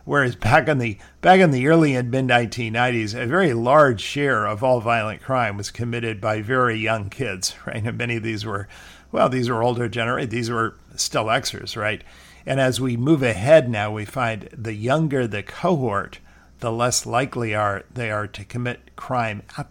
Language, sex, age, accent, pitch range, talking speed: English, male, 50-69, American, 105-125 Hz, 195 wpm